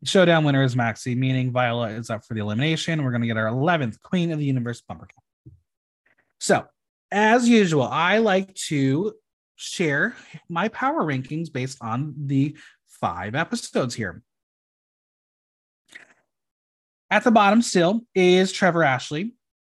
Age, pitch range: 30-49, 115-180 Hz